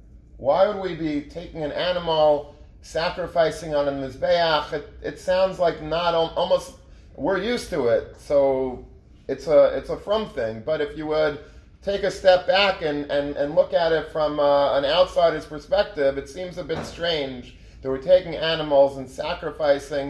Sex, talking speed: male, 175 wpm